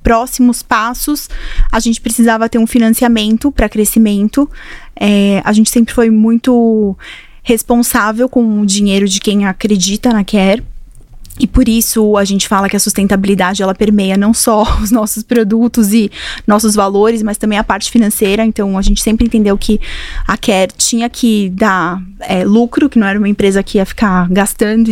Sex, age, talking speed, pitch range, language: female, 20-39, 165 wpm, 205-235 Hz, Portuguese